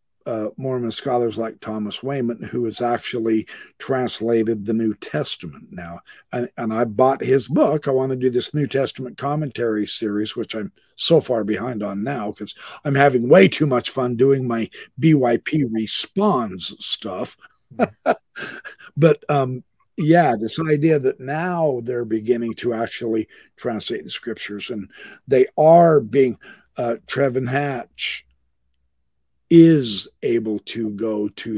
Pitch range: 110-140 Hz